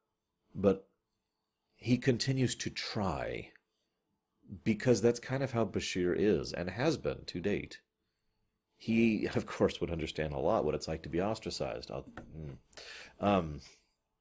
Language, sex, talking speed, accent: English, male, 130 wpm, American